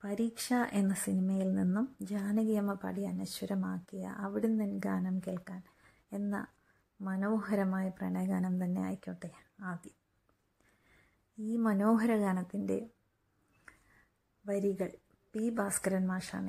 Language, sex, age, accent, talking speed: Malayalam, female, 30-49, native, 85 wpm